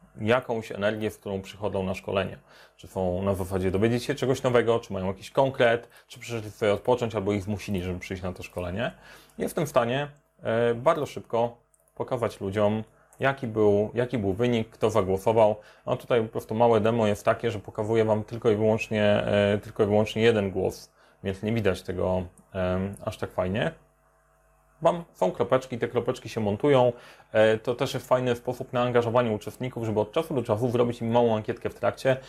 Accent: native